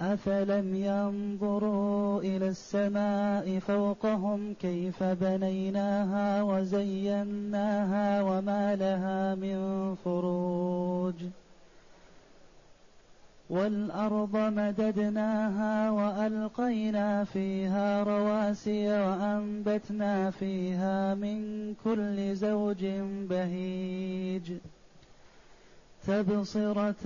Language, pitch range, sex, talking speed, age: Arabic, 190-215 Hz, male, 55 wpm, 30-49